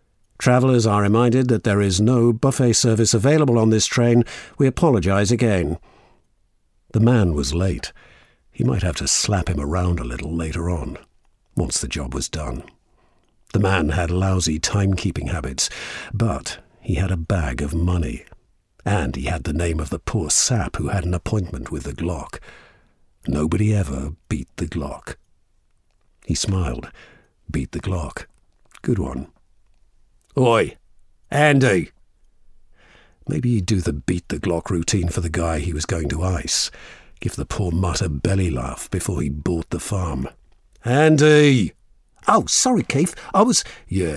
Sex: male